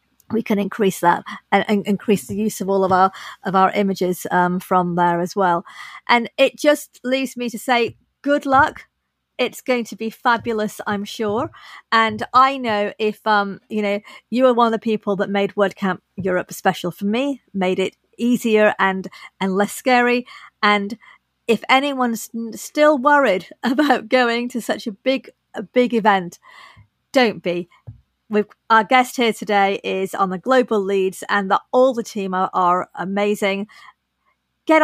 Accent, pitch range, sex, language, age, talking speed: British, 195-250 Hz, female, English, 40-59, 170 wpm